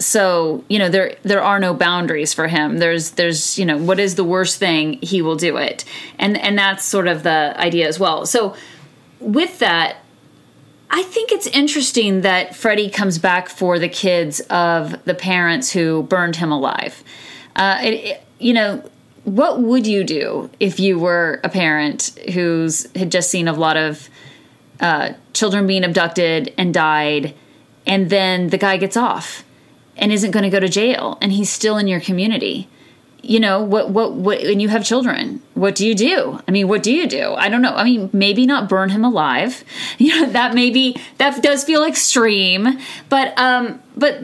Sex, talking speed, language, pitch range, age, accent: female, 185 wpm, English, 180-245 Hz, 30-49, American